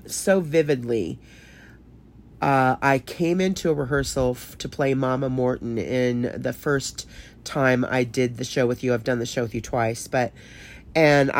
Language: English